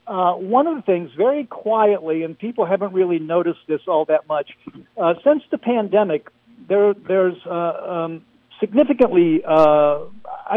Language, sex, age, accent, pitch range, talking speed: English, male, 60-79, American, 145-185 Hz, 150 wpm